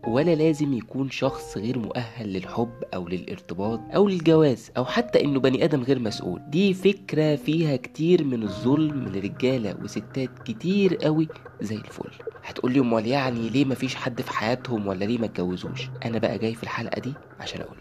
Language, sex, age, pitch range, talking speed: Arabic, male, 20-39, 100-140 Hz, 175 wpm